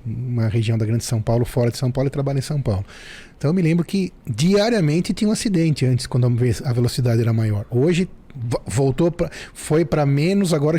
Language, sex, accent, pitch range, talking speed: Portuguese, male, Brazilian, 120-155 Hz, 200 wpm